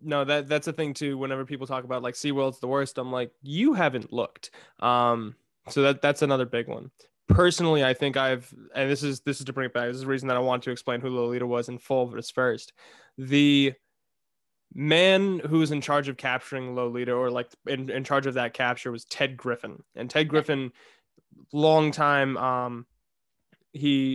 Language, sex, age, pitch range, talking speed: English, male, 20-39, 130-150 Hz, 205 wpm